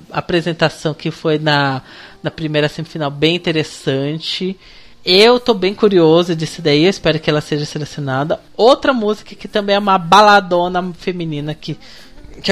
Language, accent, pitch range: Portuguese, Brazilian, 155-225 Hz